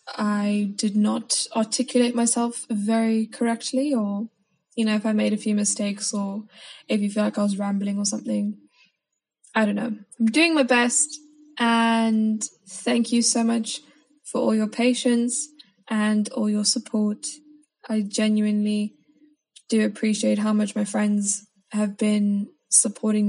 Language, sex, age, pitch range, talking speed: English, female, 10-29, 210-235 Hz, 145 wpm